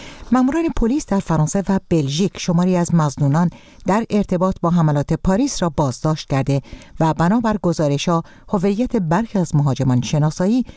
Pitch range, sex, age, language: 145-195 Hz, female, 50-69, Persian